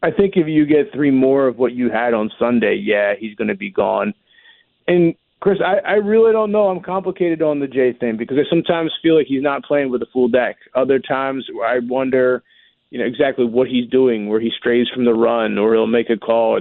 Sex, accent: male, American